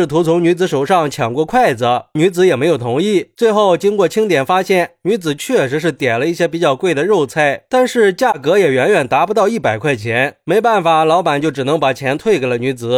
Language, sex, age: Chinese, male, 30-49